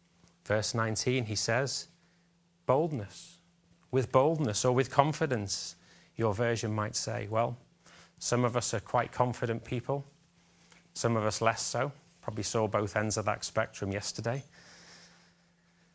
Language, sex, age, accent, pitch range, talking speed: English, male, 30-49, British, 110-145 Hz, 130 wpm